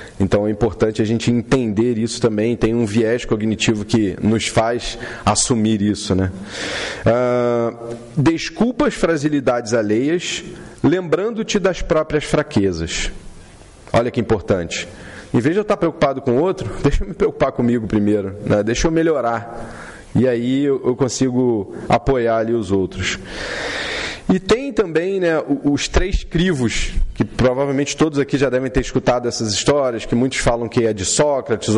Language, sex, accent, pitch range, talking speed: Portuguese, male, Brazilian, 110-150 Hz, 155 wpm